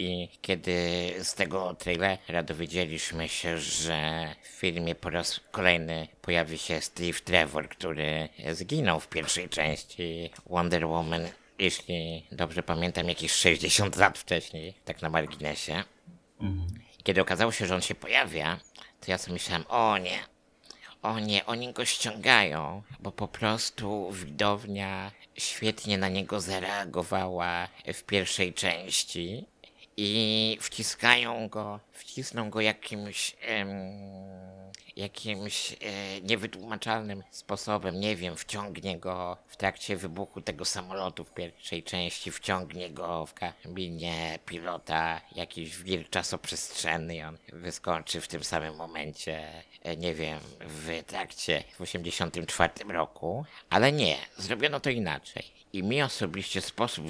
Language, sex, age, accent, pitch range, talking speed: Polish, male, 50-69, native, 85-100 Hz, 120 wpm